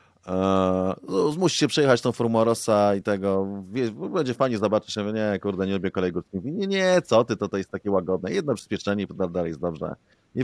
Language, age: Polish, 30-49